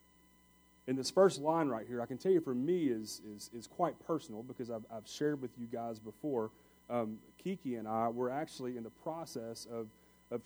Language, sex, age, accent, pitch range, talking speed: English, male, 30-49, American, 100-125 Hz, 205 wpm